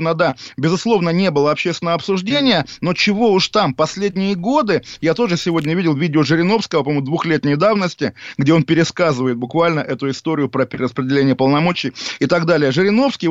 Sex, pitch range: male, 140-180 Hz